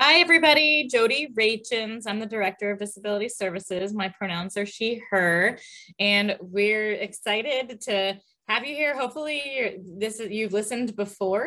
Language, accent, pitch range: English, American, 175-215 Hz